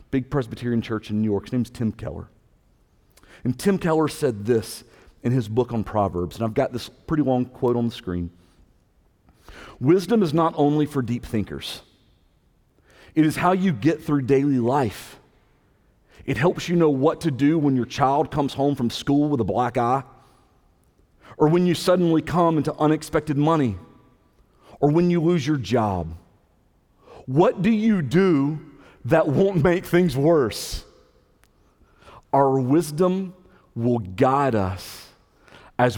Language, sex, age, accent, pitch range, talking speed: English, male, 40-59, American, 105-150 Hz, 155 wpm